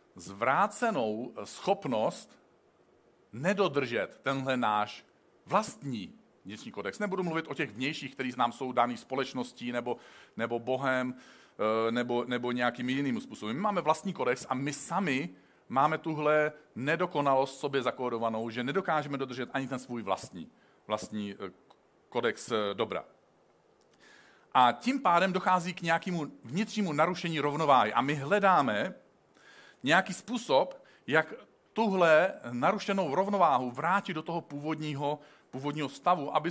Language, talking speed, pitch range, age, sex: Czech, 120 wpm, 130-165 Hz, 40-59, male